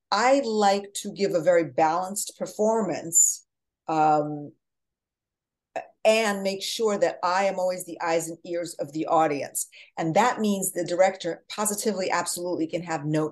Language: English